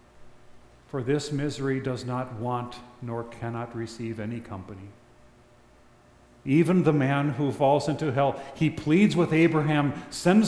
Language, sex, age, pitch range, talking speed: English, male, 40-59, 120-145 Hz, 130 wpm